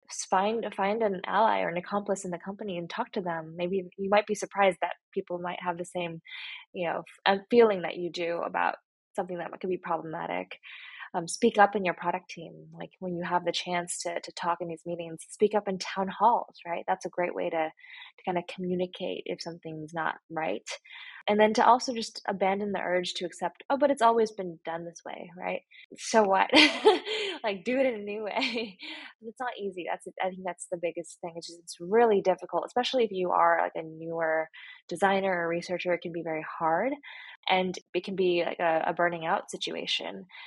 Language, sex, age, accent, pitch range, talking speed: English, female, 10-29, American, 170-210 Hz, 210 wpm